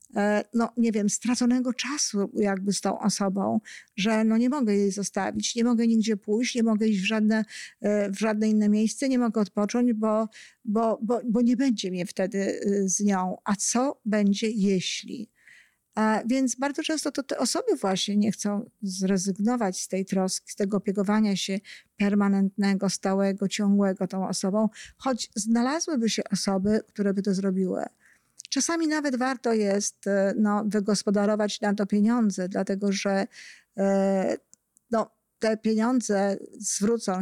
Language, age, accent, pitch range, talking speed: Polish, 50-69, native, 200-230 Hz, 150 wpm